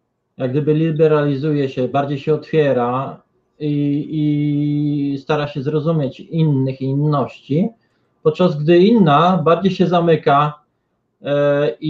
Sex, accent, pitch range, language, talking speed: male, native, 140-175 Hz, Polish, 115 wpm